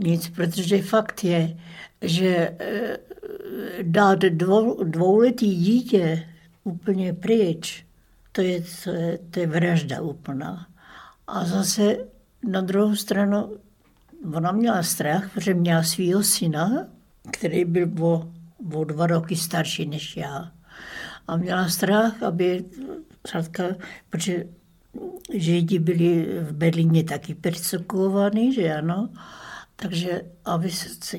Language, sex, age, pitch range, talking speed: Czech, female, 60-79, 165-200 Hz, 110 wpm